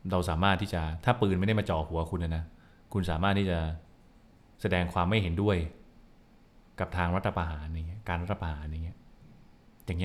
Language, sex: Thai, male